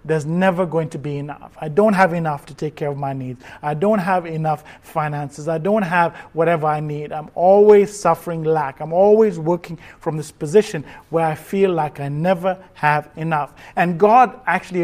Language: English